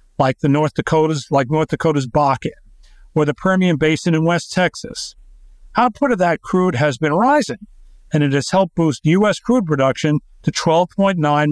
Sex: male